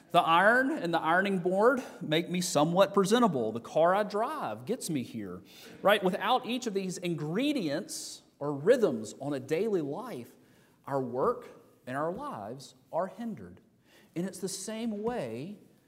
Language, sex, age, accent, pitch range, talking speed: English, male, 40-59, American, 125-180 Hz, 155 wpm